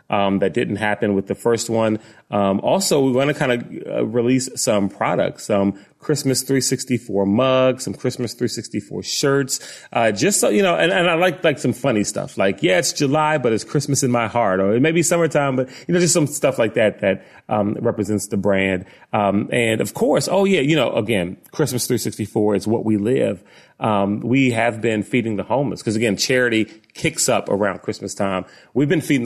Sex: male